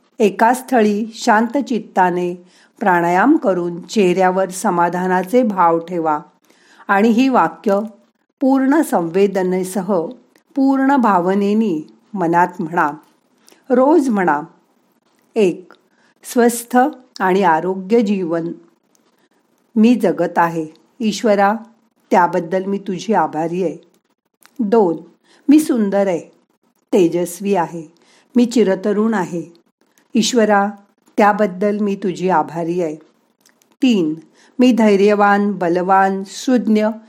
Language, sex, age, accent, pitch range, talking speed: Marathi, female, 50-69, native, 180-235 Hz, 85 wpm